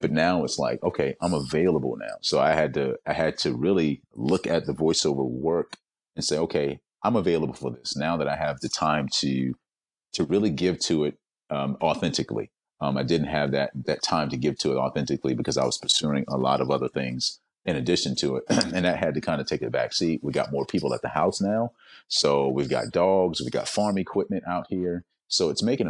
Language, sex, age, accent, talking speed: English, male, 30-49, American, 225 wpm